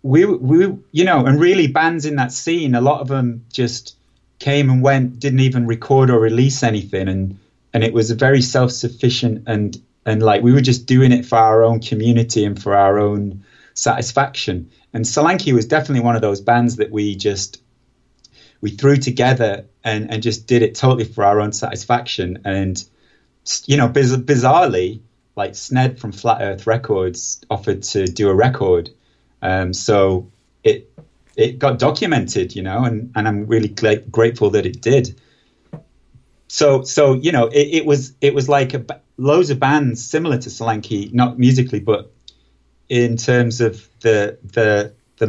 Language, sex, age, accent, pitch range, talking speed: English, male, 30-49, British, 105-130 Hz, 175 wpm